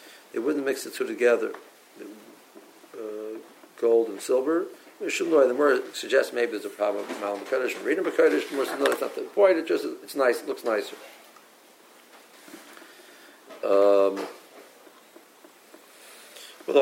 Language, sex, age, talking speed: English, male, 50-69, 145 wpm